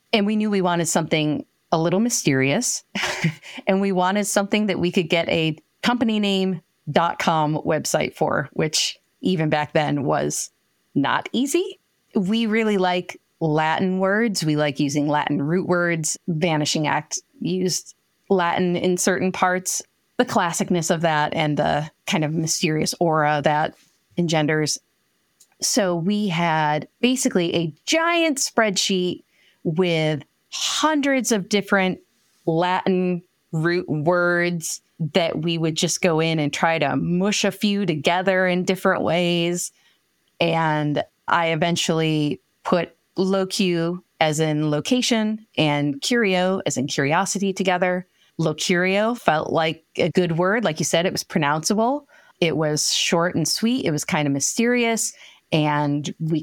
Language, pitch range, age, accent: English, 155-195 Hz, 30-49, American